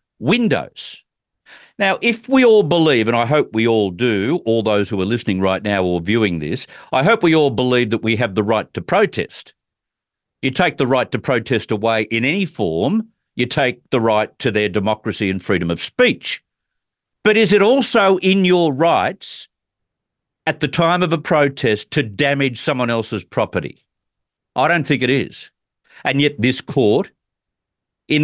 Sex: male